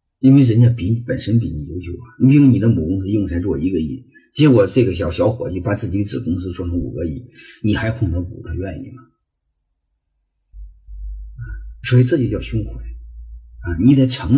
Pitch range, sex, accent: 85-125 Hz, male, native